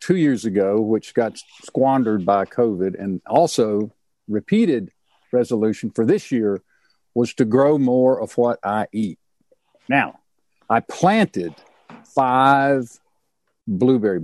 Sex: male